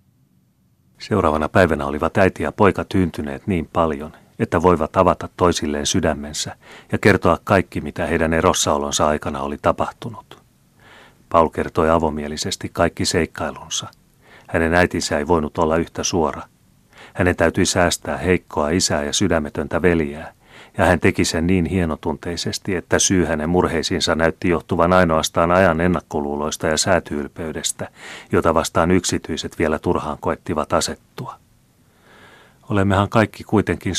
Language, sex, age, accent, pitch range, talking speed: Finnish, male, 30-49, native, 80-95 Hz, 125 wpm